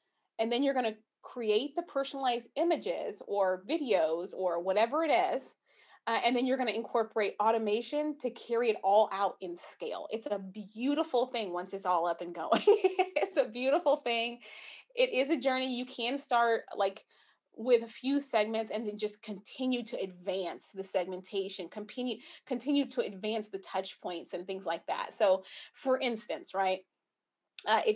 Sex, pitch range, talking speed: female, 200-275 Hz, 165 wpm